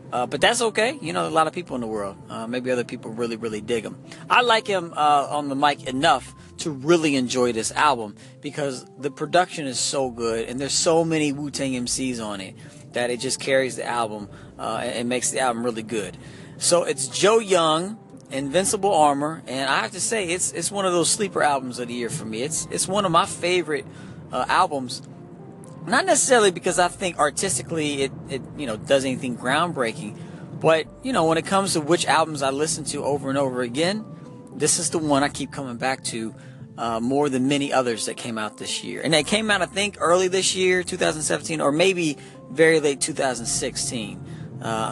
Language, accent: English, American